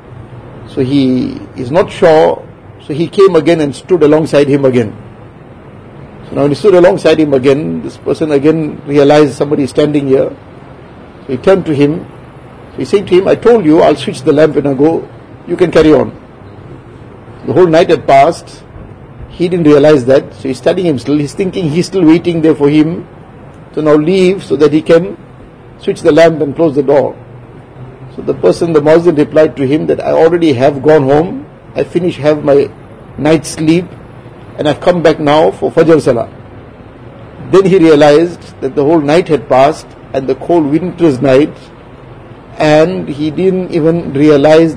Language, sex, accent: English, male, Indian